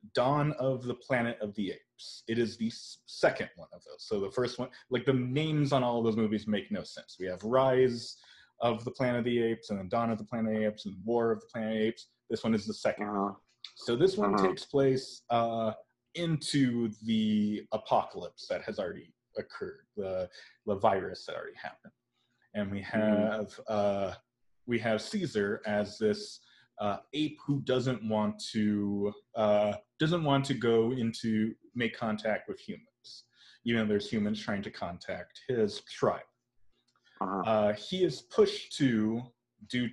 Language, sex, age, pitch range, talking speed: English, male, 30-49, 105-130 Hz, 180 wpm